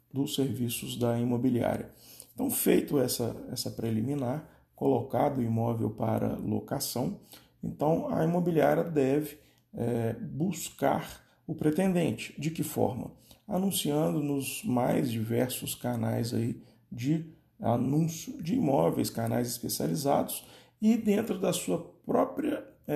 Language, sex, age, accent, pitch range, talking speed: Portuguese, male, 40-59, Brazilian, 120-175 Hz, 105 wpm